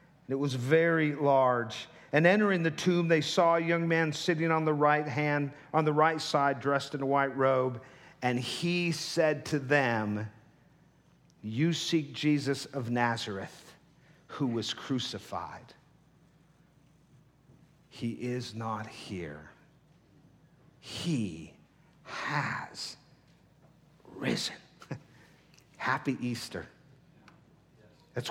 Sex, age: male, 50-69